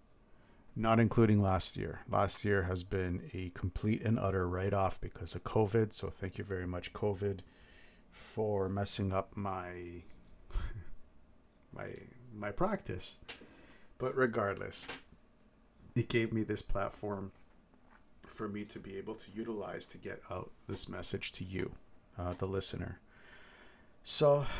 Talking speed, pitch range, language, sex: 130 wpm, 95-115 Hz, English, male